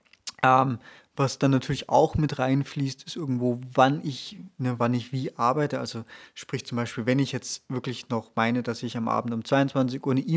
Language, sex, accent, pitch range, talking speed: German, male, German, 120-145 Hz, 195 wpm